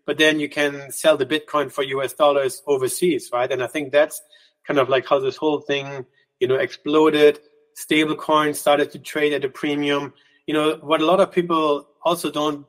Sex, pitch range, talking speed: male, 140-175 Hz, 200 wpm